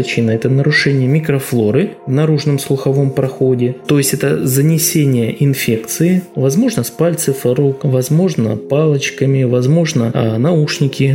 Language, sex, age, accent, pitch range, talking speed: Russian, male, 20-39, native, 125-145 Hz, 115 wpm